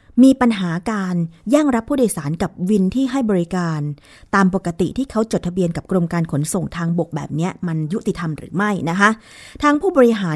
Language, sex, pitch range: Thai, female, 170-225 Hz